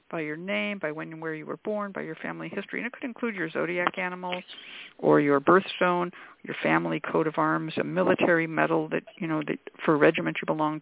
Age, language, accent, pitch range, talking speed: 60-79, English, American, 175-235 Hz, 225 wpm